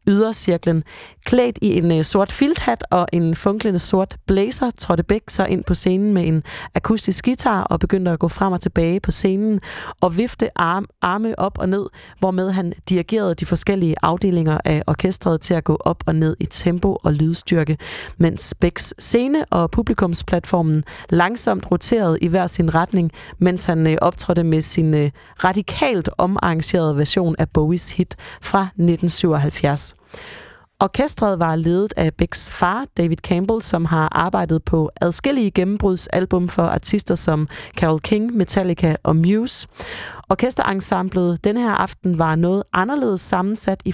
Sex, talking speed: female, 150 wpm